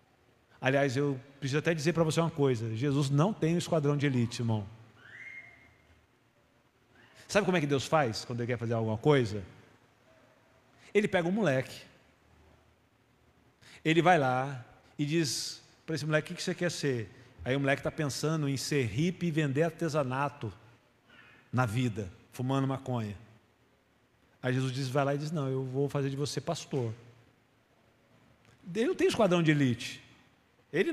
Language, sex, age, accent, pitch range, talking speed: Portuguese, male, 50-69, Brazilian, 125-170 Hz, 165 wpm